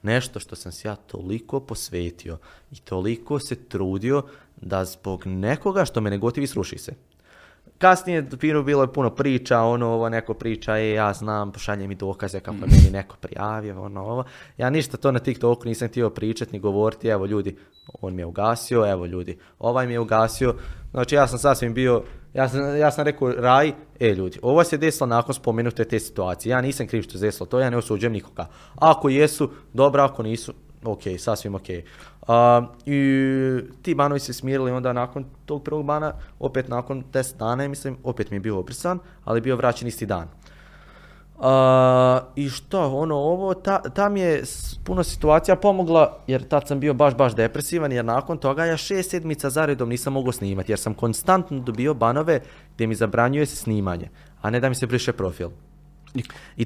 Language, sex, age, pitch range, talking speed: Croatian, male, 20-39, 105-140 Hz, 185 wpm